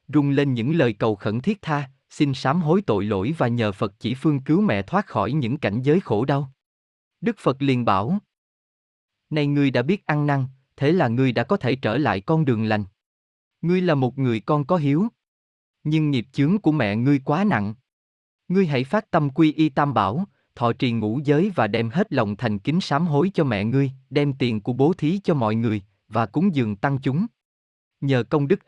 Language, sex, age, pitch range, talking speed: Vietnamese, male, 20-39, 115-155 Hz, 215 wpm